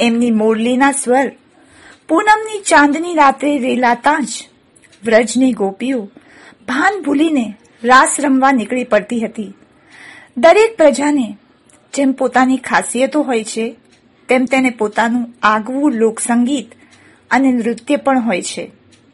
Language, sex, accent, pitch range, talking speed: Gujarati, female, native, 235-310 Hz, 105 wpm